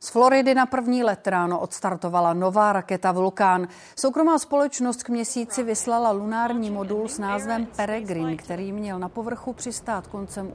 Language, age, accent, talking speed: Czech, 40-59, native, 150 wpm